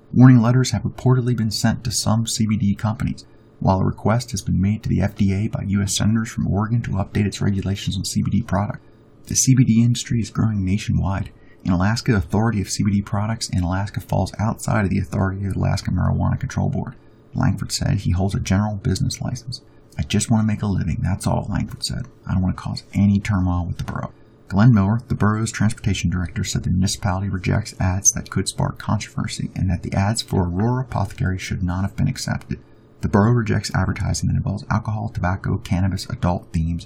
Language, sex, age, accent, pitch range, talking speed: English, male, 30-49, American, 95-115 Hz, 200 wpm